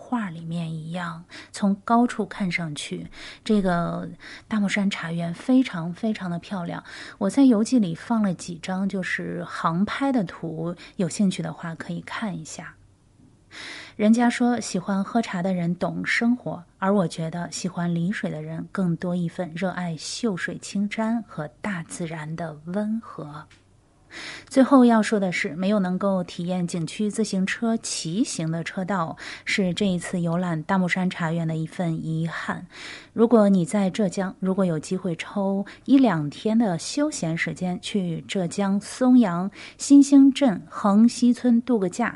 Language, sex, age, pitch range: Chinese, female, 30-49, 170-220 Hz